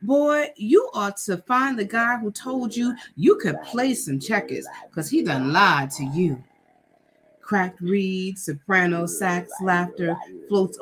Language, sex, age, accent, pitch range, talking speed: English, female, 30-49, American, 165-220 Hz, 150 wpm